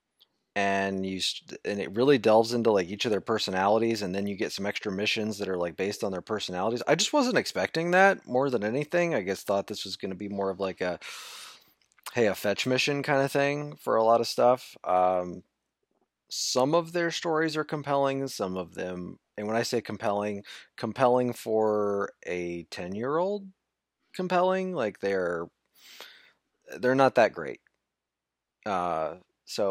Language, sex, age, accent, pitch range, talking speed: English, male, 20-39, American, 100-140 Hz, 175 wpm